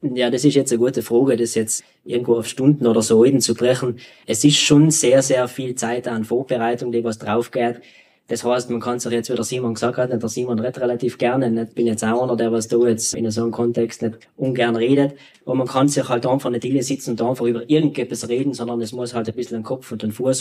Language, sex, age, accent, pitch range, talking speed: German, male, 20-39, Austrian, 115-130 Hz, 250 wpm